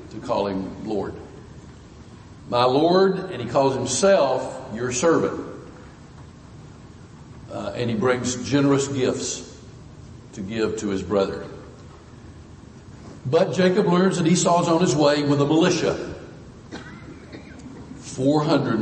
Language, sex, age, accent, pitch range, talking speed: English, male, 50-69, American, 115-150 Hz, 115 wpm